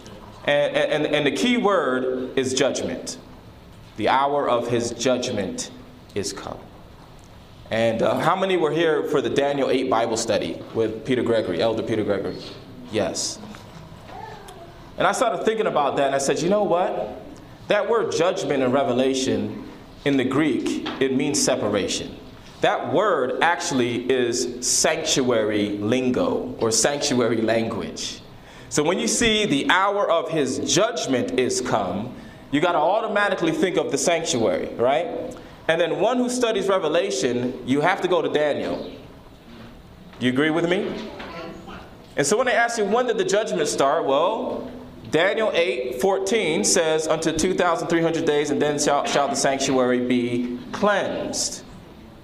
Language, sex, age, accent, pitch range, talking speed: English, male, 30-49, American, 125-180 Hz, 150 wpm